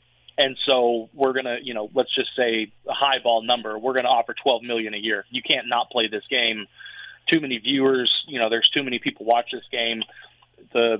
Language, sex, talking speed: English, male, 220 wpm